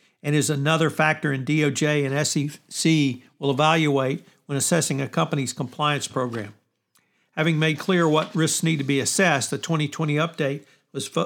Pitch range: 145-170 Hz